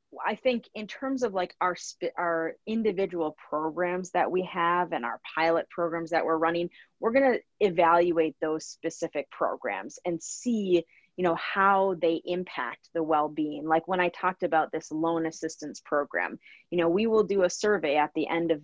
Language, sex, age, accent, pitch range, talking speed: English, female, 30-49, American, 165-195 Hz, 185 wpm